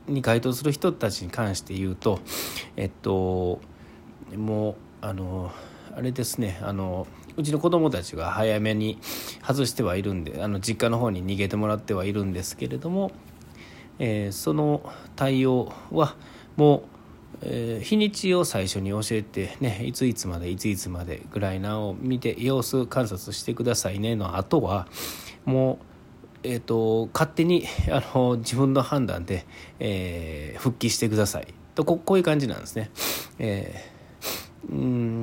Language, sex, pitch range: Japanese, male, 95-140 Hz